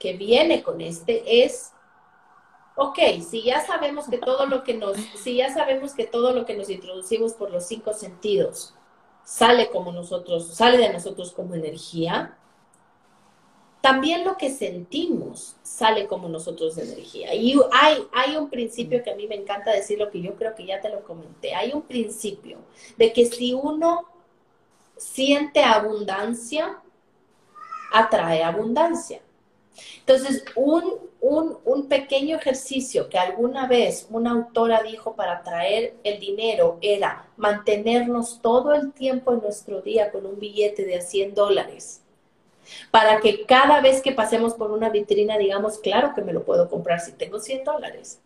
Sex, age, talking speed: female, 40-59, 155 wpm